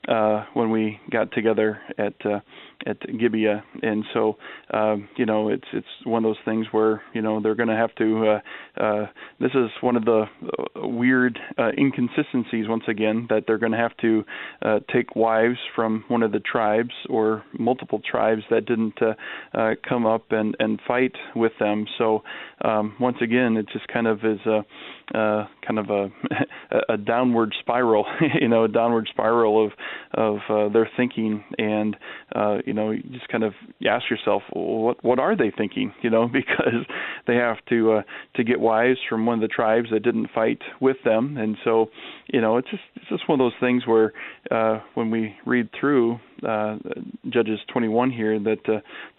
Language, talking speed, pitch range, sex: English, 190 wpm, 110-120 Hz, male